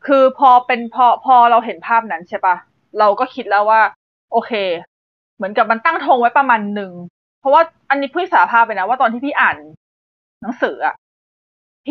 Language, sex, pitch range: Thai, female, 200-275 Hz